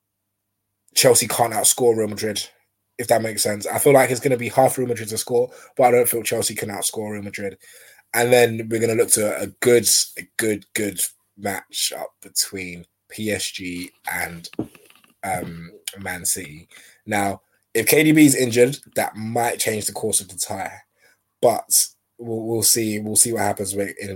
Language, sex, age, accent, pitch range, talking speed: English, male, 20-39, British, 100-130 Hz, 180 wpm